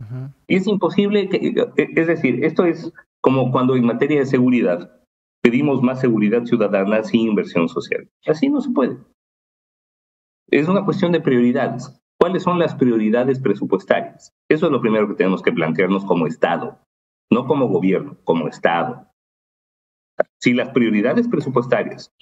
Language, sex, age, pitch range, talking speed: English, male, 50-69, 105-150 Hz, 145 wpm